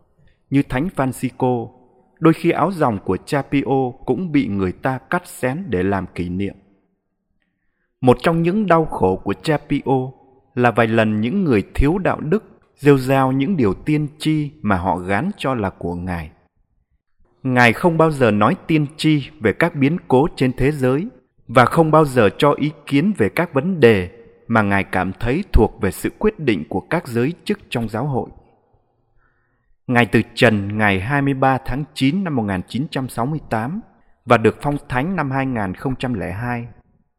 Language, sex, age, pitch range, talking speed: Vietnamese, male, 30-49, 110-150 Hz, 170 wpm